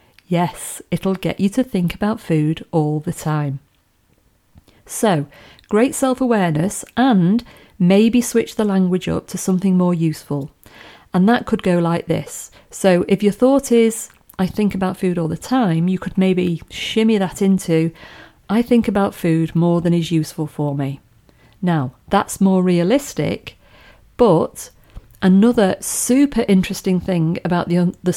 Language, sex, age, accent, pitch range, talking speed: English, female, 40-59, British, 165-210 Hz, 150 wpm